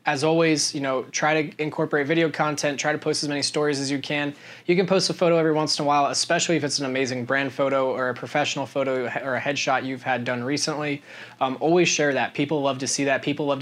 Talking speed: 250 wpm